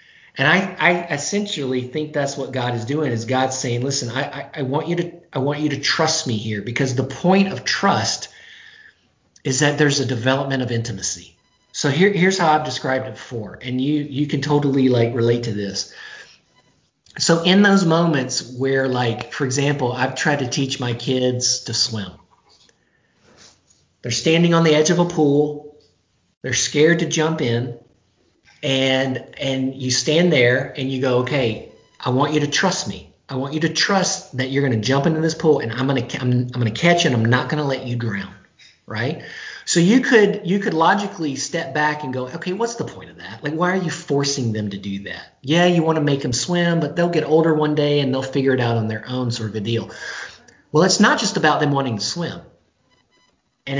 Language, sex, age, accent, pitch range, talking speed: English, male, 40-59, American, 125-160 Hz, 210 wpm